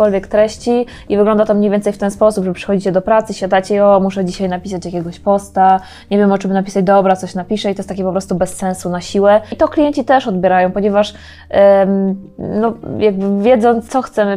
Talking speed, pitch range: 210 wpm, 190-215 Hz